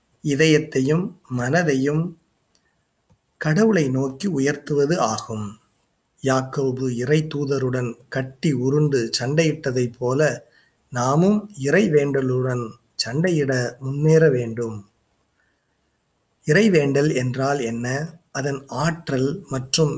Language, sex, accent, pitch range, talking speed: Tamil, male, native, 125-160 Hz, 70 wpm